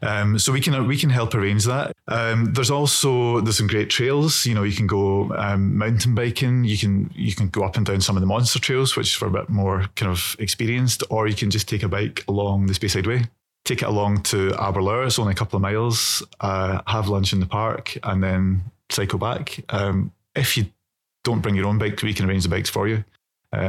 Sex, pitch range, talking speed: male, 95-115 Hz, 240 wpm